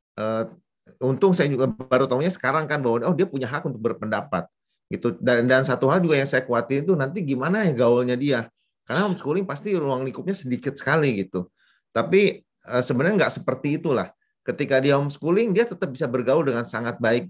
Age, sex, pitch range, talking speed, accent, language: 30-49, male, 120-150 Hz, 185 wpm, native, Indonesian